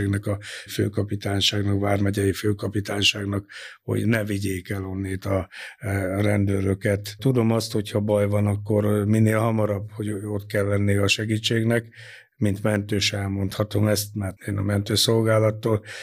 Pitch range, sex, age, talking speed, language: 100-110 Hz, male, 60-79, 130 wpm, Hungarian